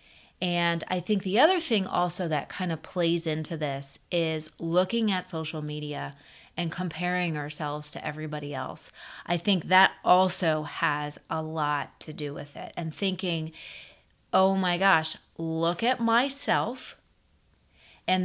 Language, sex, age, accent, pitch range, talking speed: English, female, 30-49, American, 160-195 Hz, 145 wpm